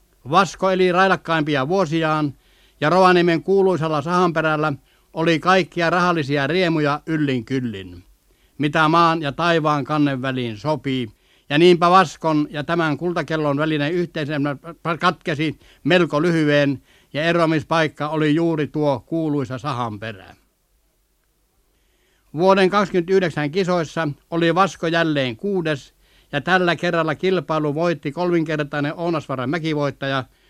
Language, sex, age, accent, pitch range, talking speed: Finnish, male, 60-79, native, 145-175 Hz, 105 wpm